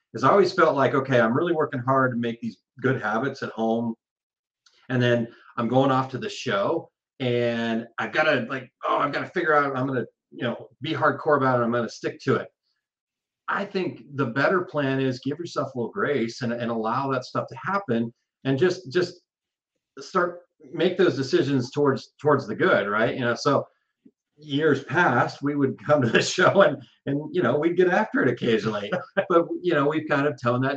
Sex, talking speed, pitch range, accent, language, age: male, 215 wpm, 115-150 Hz, American, English, 40-59